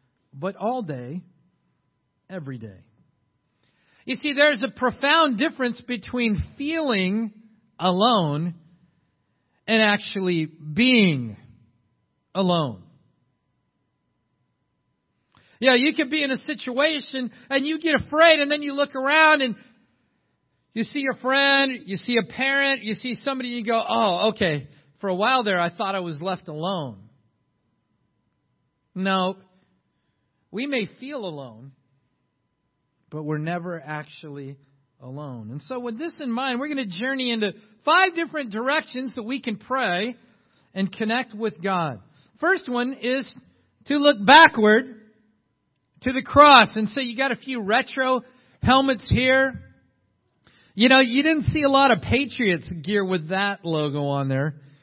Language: English